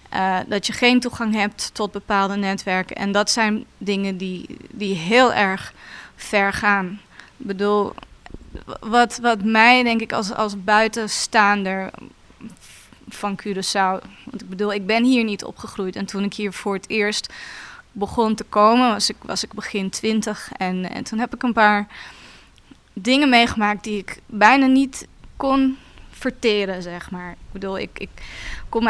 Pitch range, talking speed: 200-235 Hz, 160 wpm